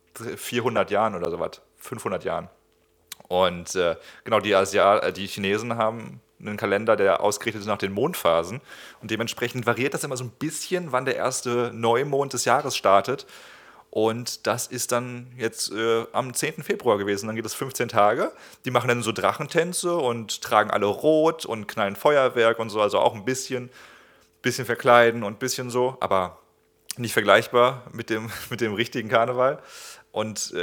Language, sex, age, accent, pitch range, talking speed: German, male, 30-49, German, 105-125 Hz, 170 wpm